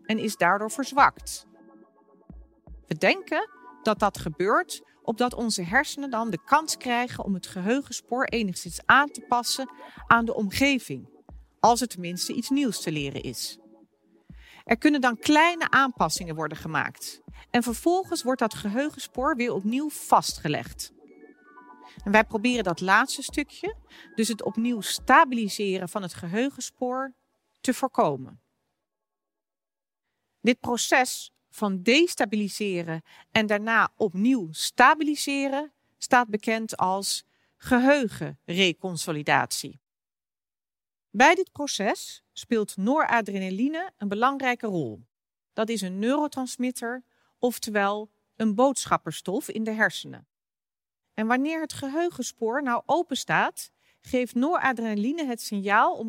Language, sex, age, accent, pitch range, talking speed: Dutch, female, 40-59, Dutch, 195-270 Hz, 115 wpm